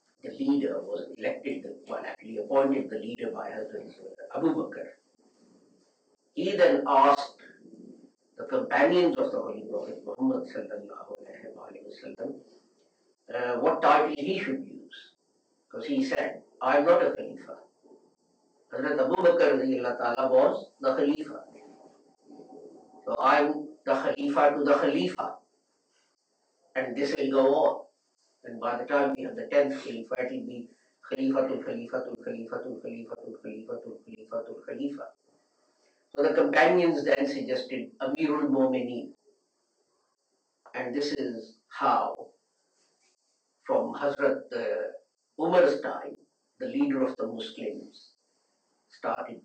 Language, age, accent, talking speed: English, 50-69, Indian, 130 wpm